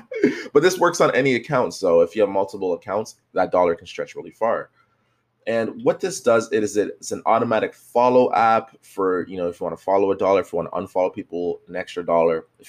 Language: English